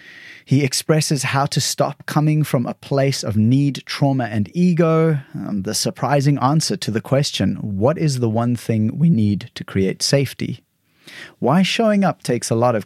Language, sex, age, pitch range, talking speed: English, male, 30-49, 105-145 Hz, 175 wpm